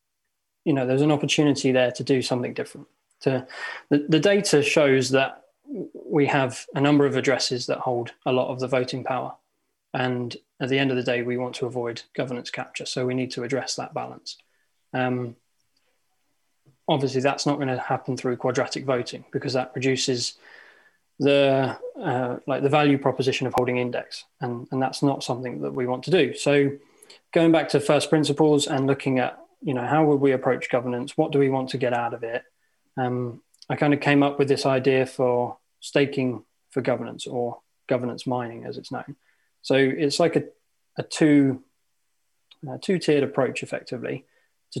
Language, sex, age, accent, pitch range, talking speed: English, male, 20-39, British, 125-145 Hz, 180 wpm